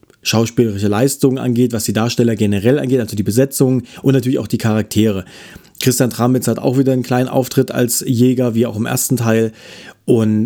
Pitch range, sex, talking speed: 110-130 Hz, male, 185 wpm